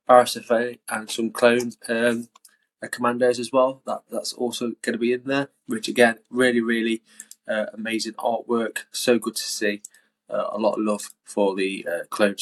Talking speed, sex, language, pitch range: 170 wpm, male, English, 105-125 Hz